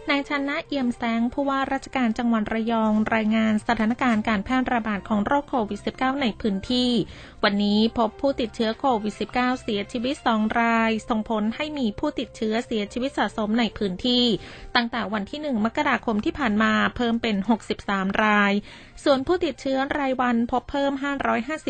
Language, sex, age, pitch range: Thai, female, 20-39, 210-250 Hz